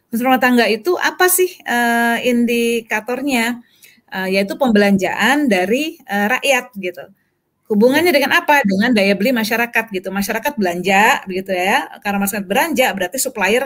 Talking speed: 125 wpm